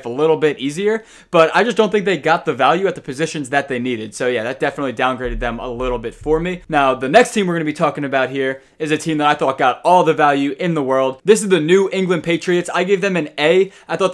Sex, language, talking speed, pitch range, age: male, English, 285 wpm, 145-170 Hz, 20-39